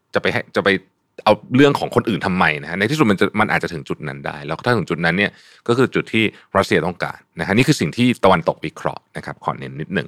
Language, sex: Thai, male